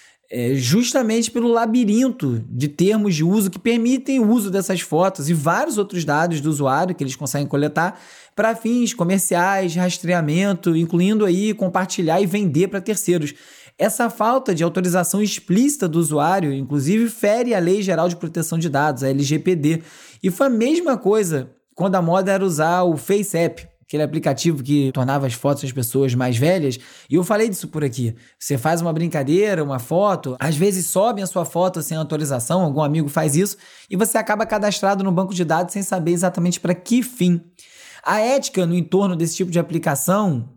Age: 20-39